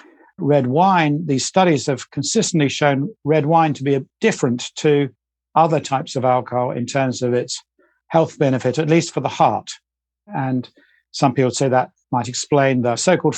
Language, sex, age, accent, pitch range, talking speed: English, male, 50-69, British, 125-150 Hz, 170 wpm